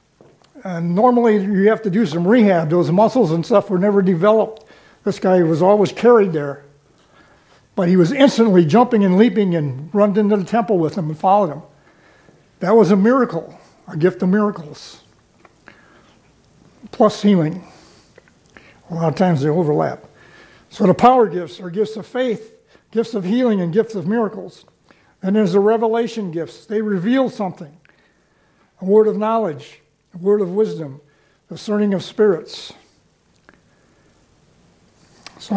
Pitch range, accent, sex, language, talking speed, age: 160-210 Hz, American, male, English, 150 wpm, 60-79